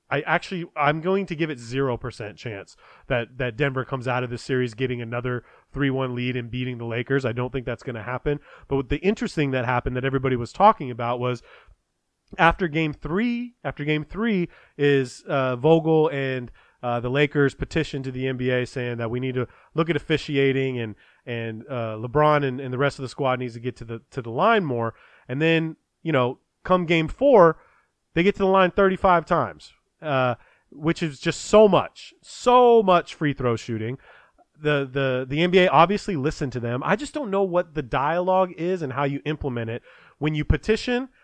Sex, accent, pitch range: male, American, 125-170 Hz